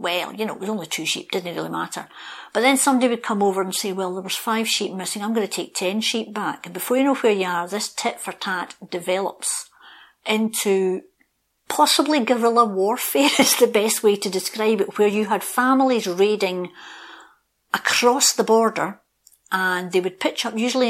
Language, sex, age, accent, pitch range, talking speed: English, female, 50-69, British, 175-225 Hz, 190 wpm